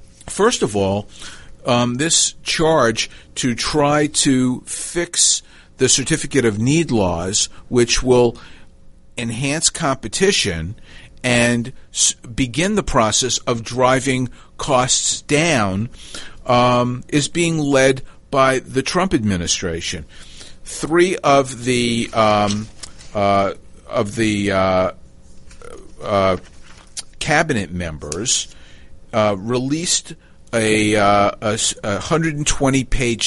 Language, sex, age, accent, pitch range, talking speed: English, male, 50-69, American, 100-130 Hz, 90 wpm